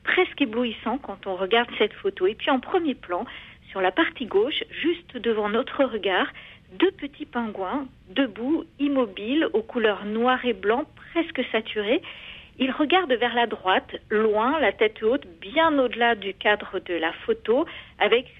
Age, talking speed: 50-69, 160 wpm